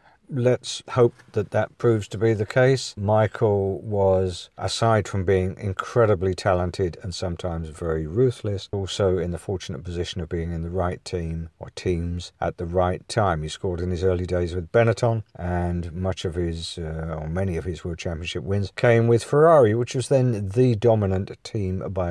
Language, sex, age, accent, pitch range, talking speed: English, male, 50-69, British, 90-115 Hz, 180 wpm